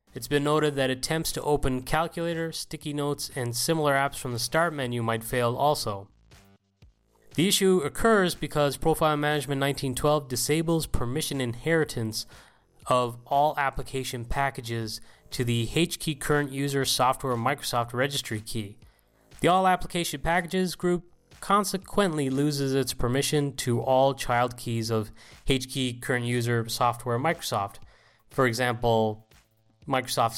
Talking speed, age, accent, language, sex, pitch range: 130 wpm, 20-39, American, English, male, 120-150 Hz